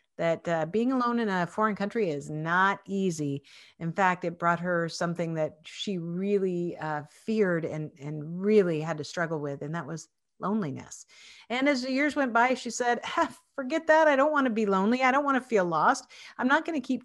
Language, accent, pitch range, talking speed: English, American, 170-225 Hz, 215 wpm